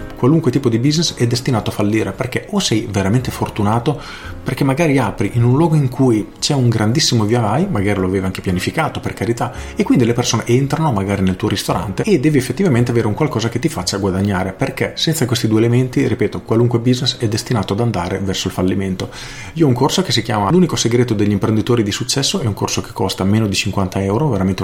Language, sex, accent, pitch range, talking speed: Italian, male, native, 100-125 Hz, 220 wpm